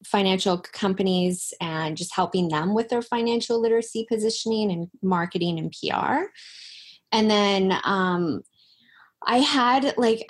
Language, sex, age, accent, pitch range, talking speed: English, female, 20-39, American, 175-225 Hz, 120 wpm